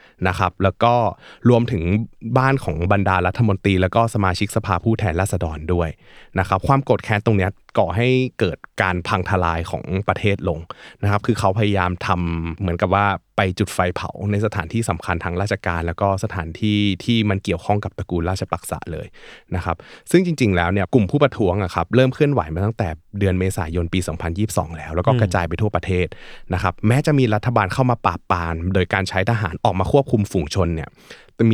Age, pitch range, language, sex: 20-39, 90-110 Hz, Thai, male